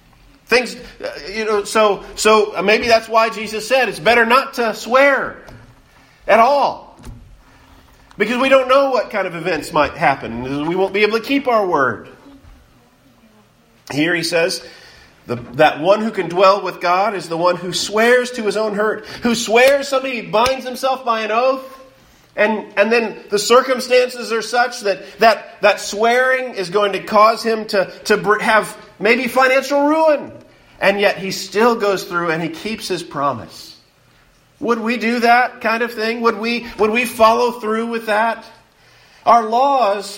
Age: 40-59